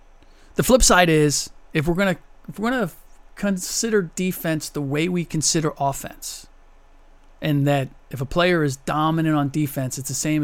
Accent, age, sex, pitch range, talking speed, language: American, 40-59, male, 140-195 Hz, 155 wpm, English